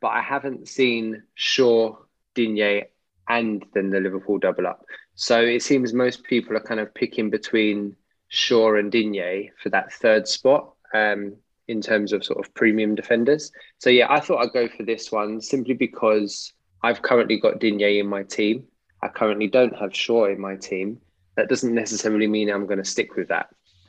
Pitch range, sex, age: 105-120 Hz, male, 20-39